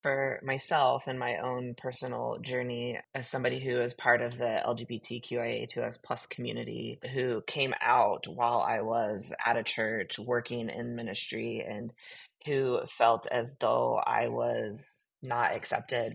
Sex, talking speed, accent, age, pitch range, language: female, 140 wpm, American, 20-39, 120-135 Hz, English